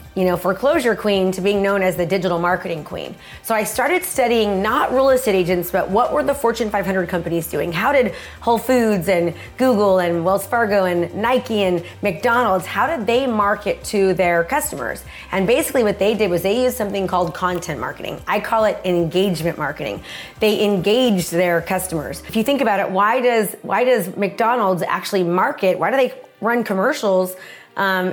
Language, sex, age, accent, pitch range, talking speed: English, female, 30-49, American, 185-230 Hz, 185 wpm